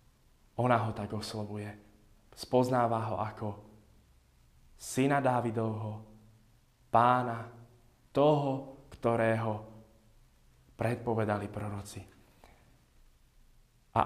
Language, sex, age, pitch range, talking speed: Slovak, male, 20-39, 115-140 Hz, 65 wpm